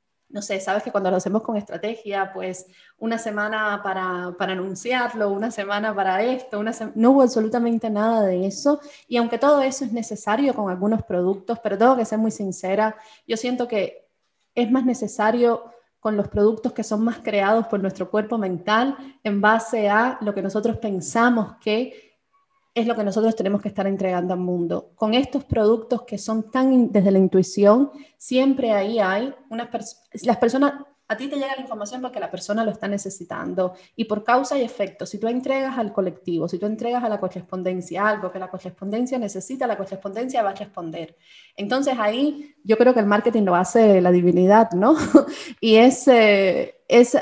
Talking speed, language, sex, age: 185 wpm, Spanish, female, 20-39